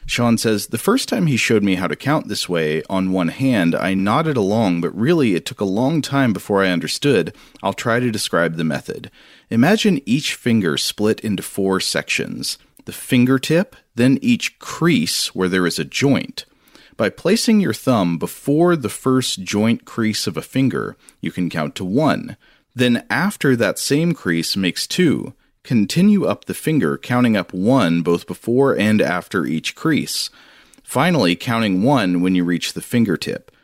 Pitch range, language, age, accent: 90-130 Hz, English, 40-59, American